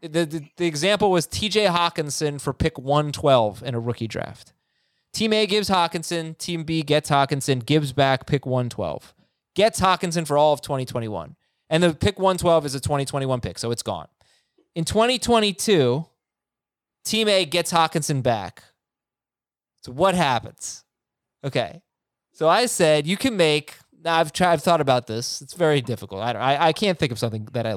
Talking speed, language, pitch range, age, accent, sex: 175 wpm, English, 135-185 Hz, 20-39, American, male